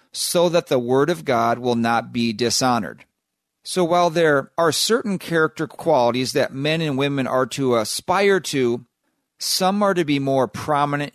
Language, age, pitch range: English, 40-59, 120-150 Hz